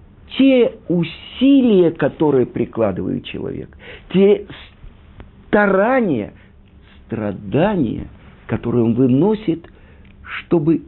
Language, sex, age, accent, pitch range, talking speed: Russian, male, 50-69, native, 100-165 Hz, 65 wpm